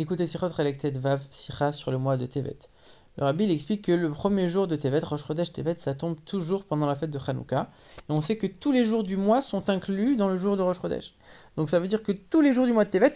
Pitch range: 150-200 Hz